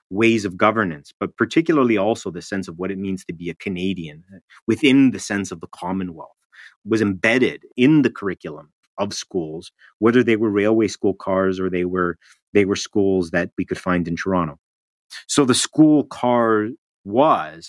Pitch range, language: 95-115 Hz, English